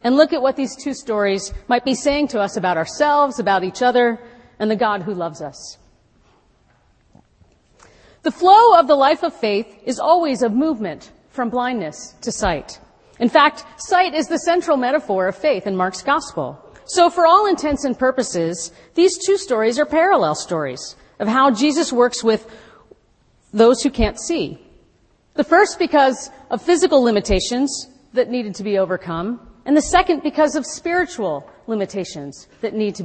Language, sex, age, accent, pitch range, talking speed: English, female, 40-59, American, 195-295 Hz, 165 wpm